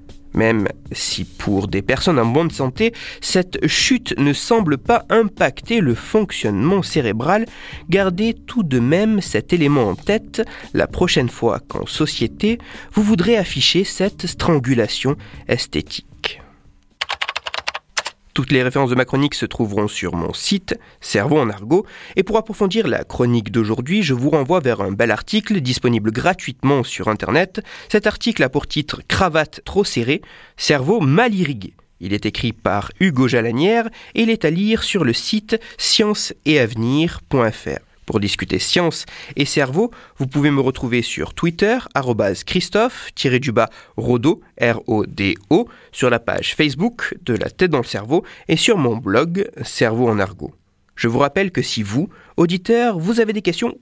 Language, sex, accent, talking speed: French, male, French, 155 wpm